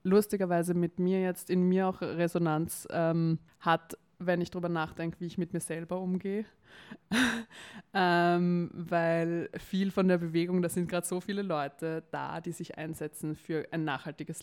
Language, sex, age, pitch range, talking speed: German, female, 20-39, 165-180 Hz, 160 wpm